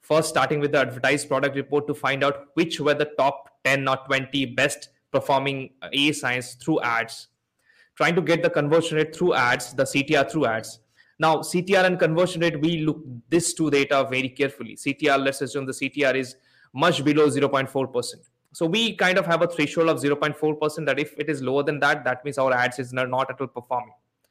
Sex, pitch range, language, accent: male, 135-165 Hz, English, Indian